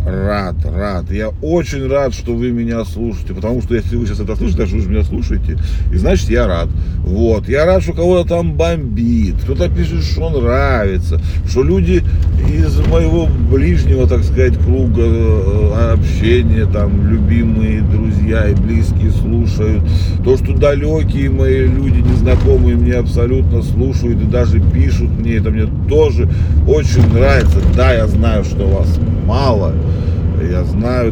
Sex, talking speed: male, 150 wpm